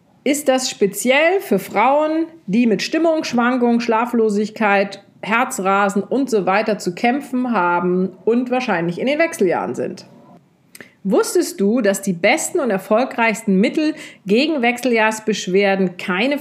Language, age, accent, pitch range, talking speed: German, 40-59, German, 195-250 Hz, 120 wpm